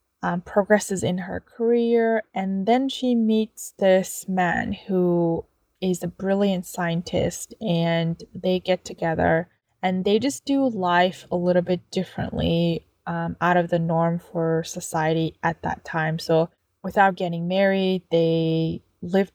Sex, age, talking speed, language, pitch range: female, 20-39, 140 wpm, English, 170-195 Hz